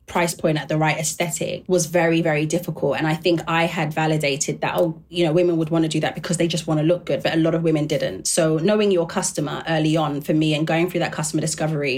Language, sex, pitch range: English, female, 155-185 Hz